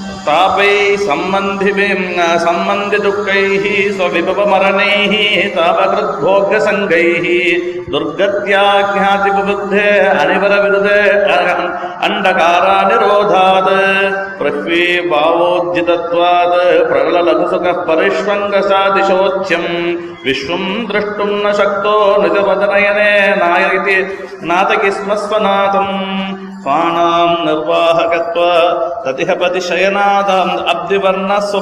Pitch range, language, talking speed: 175-200 Hz, Tamil, 40 wpm